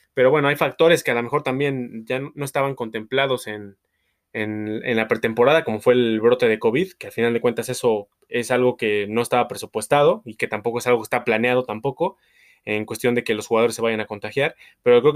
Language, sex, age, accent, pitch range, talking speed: Spanish, male, 20-39, Mexican, 115-145 Hz, 220 wpm